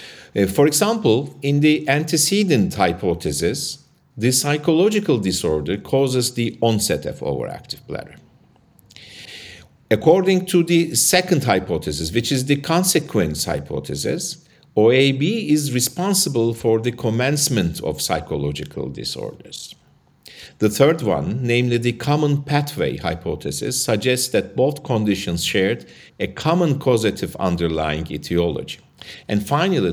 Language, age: English, 50-69